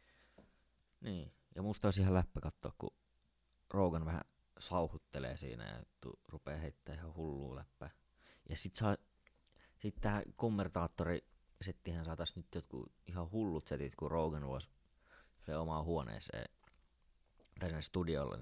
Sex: male